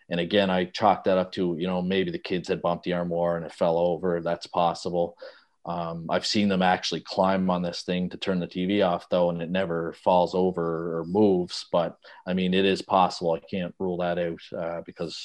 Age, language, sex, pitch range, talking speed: 30-49, English, male, 85-100 Hz, 225 wpm